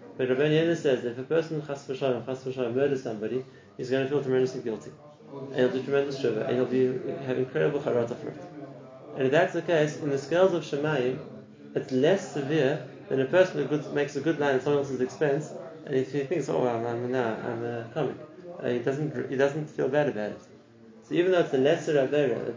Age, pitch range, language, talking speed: 30-49, 130-155 Hz, English, 220 wpm